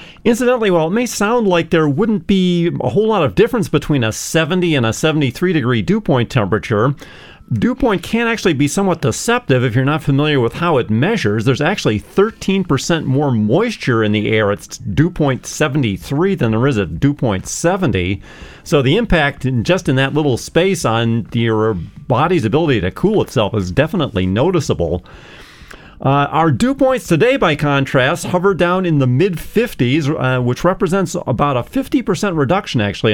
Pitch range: 120-175 Hz